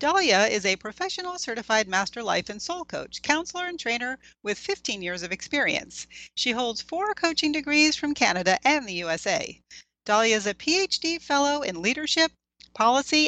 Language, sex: English, female